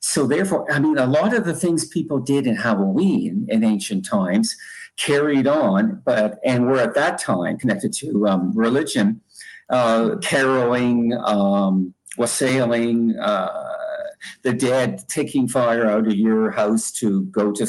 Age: 50-69